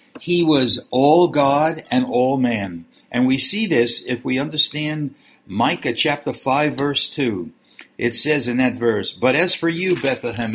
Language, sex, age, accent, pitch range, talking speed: English, male, 60-79, American, 120-170 Hz, 165 wpm